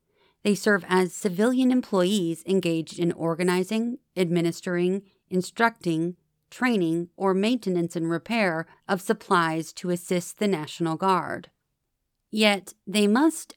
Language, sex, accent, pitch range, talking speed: English, female, American, 175-210 Hz, 110 wpm